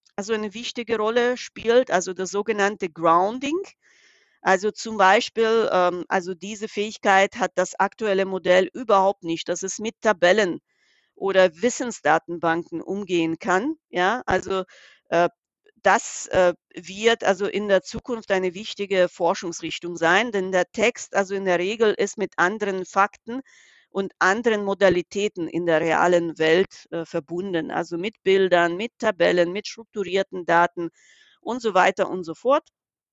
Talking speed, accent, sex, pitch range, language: 135 wpm, German, female, 175-215 Hz, German